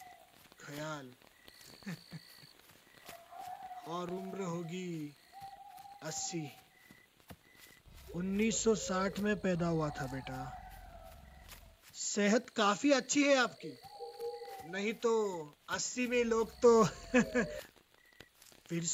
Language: Hindi